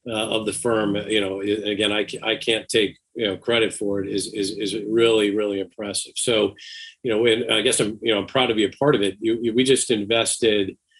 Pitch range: 105-125 Hz